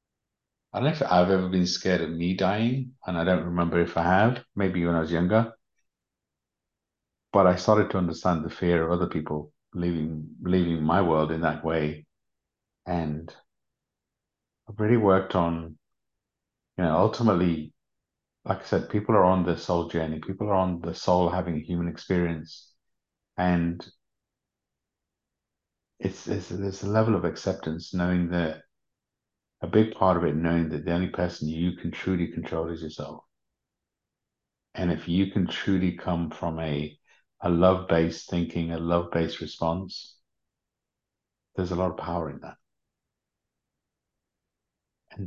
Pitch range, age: 80-95 Hz, 50-69